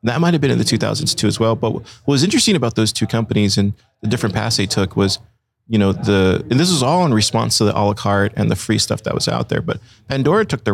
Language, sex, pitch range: English, male, 105-120 Hz